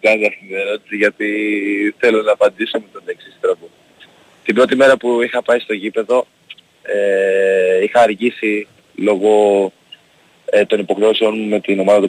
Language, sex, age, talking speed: Greek, male, 30-49, 135 wpm